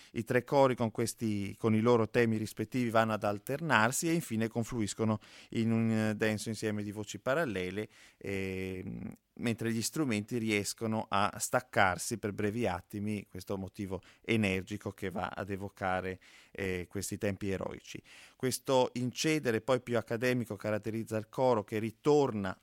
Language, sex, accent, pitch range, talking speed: Italian, male, native, 100-115 Hz, 145 wpm